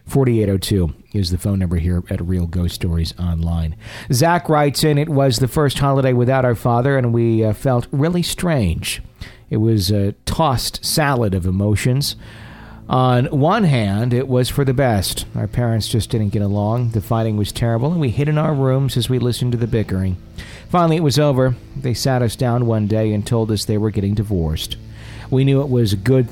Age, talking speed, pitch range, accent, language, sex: 40-59, 200 wpm, 105-130 Hz, American, English, male